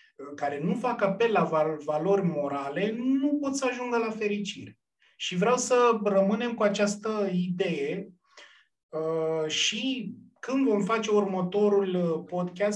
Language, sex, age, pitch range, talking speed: Romanian, male, 30-49, 155-205 Hz, 120 wpm